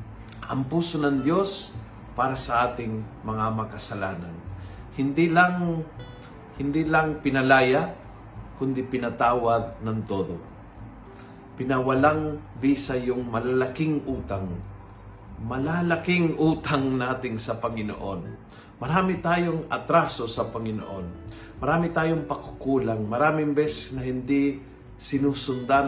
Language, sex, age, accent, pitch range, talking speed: Filipino, male, 50-69, native, 115-150 Hz, 95 wpm